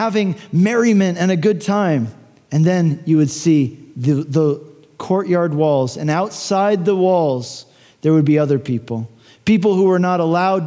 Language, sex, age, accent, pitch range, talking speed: English, male, 40-59, American, 150-200 Hz, 165 wpm